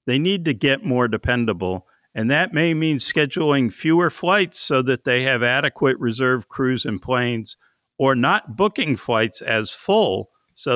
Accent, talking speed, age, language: American, 160 wpm, 60-79, English